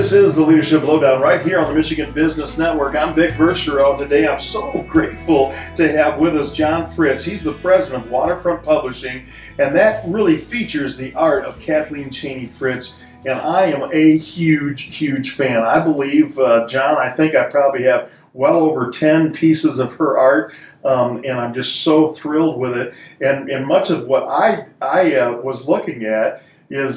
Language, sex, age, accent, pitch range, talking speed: English, male, 40-59, American, 130-165 Hz, 185 wpm